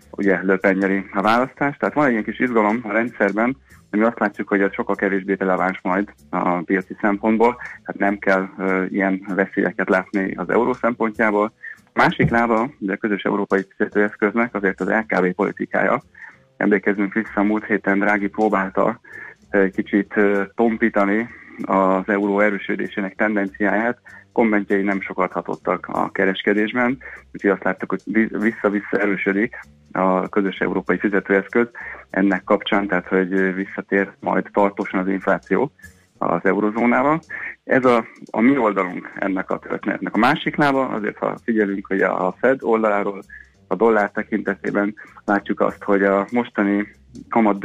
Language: Hungarian